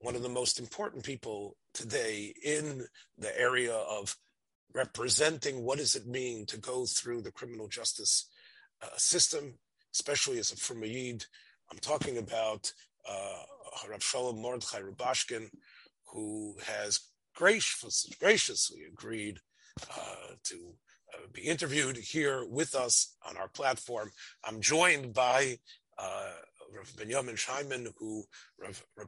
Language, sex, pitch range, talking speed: English, male, 110-150 Hz, 120 wpm